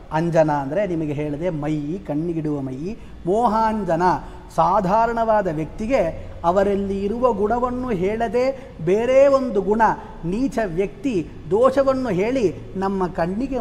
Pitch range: 165-220 Hz